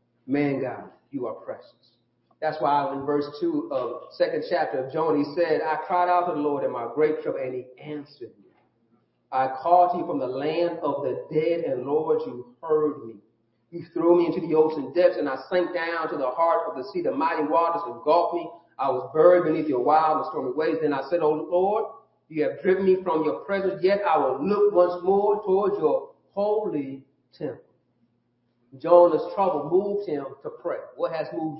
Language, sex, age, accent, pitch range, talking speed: English, male, 40-59, American, 155-205 Hz, 210 wpm